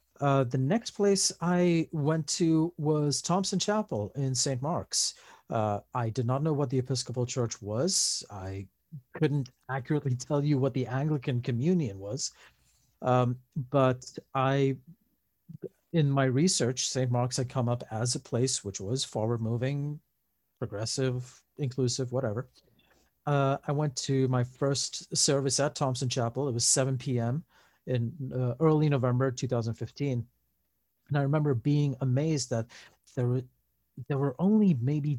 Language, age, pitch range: English, 50-69, 120-145 Hz